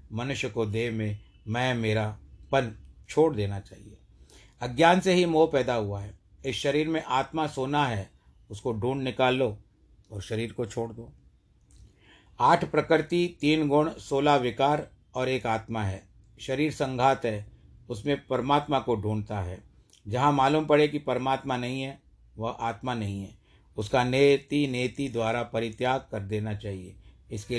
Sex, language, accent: male, Hindi, native